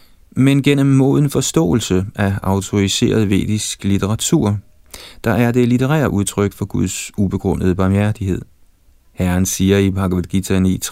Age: 30-49